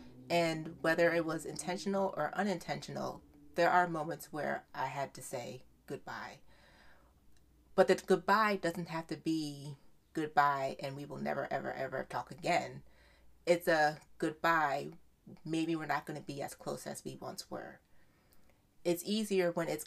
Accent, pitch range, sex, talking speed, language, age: American, 135-175 Hz, female, 150 wpm, English, 30-49